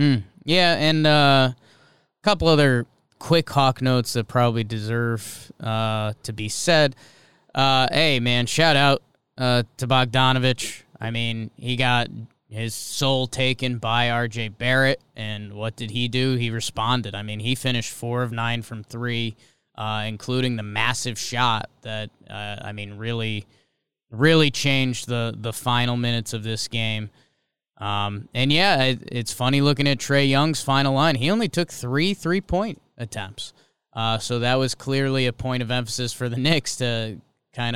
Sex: male